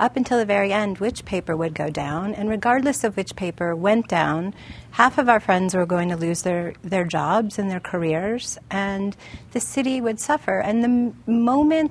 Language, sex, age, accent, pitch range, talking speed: English, female, 40-59, American, 185-220 Hz, 195 wpm